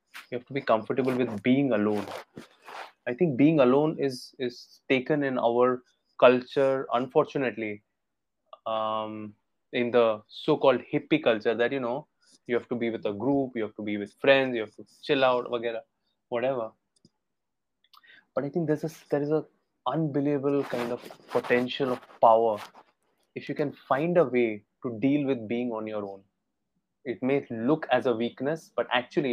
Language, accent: English, Indian